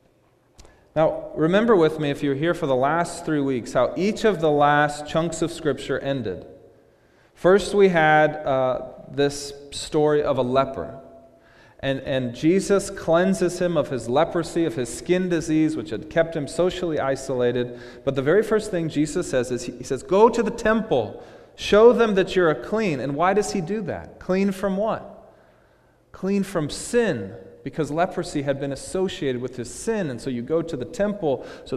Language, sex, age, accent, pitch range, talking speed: English, male, 30-49, American, 130-190 Hz, 185 wpm